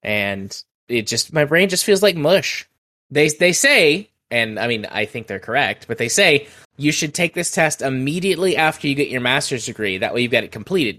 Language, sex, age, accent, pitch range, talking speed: English, male, 20-39, American, 110-150 Hz, 220 wpm